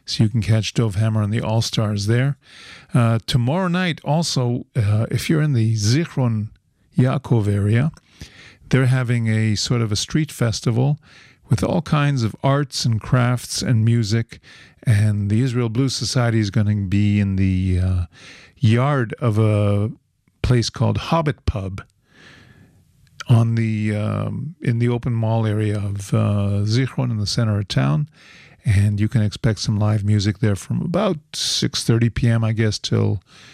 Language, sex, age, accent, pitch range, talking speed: English, male, 50-69, American, 105-130 Hz, 160 wpm